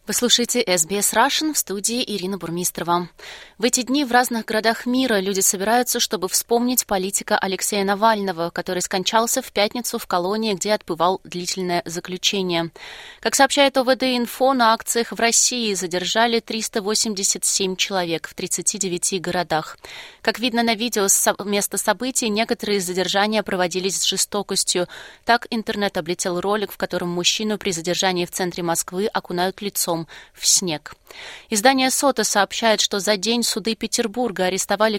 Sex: female